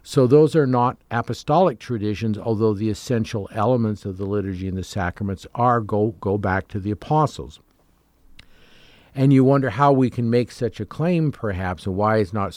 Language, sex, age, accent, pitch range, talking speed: English, male, 50-69, American, 95-130 Hz, 180 wpm